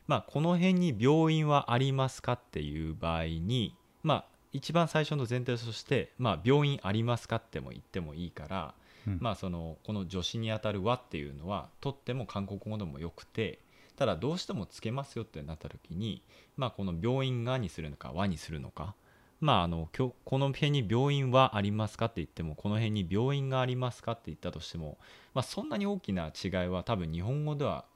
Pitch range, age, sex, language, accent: 85-130 Hz, 30-49, male, Korean, Japanese